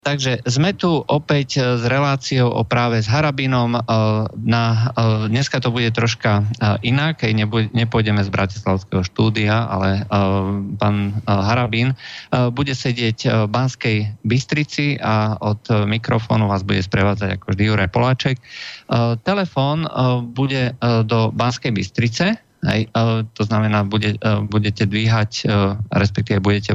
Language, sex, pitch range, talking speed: Slovak, male, 100-120 Hz, 130 wpm